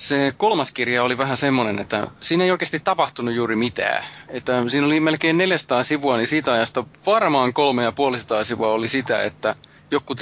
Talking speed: 170 wpm